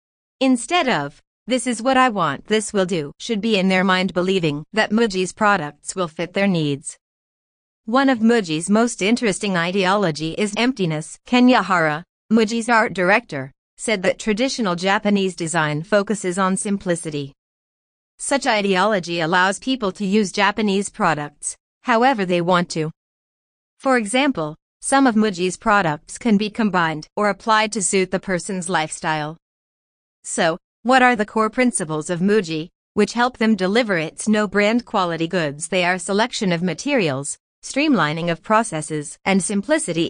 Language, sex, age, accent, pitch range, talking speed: English, female, 40-59, American, 170-225 Hz, 145 wpm